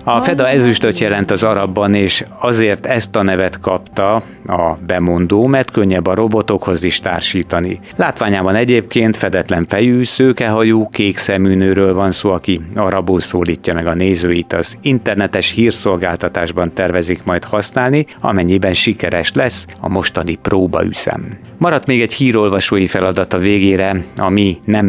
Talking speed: 140 wpm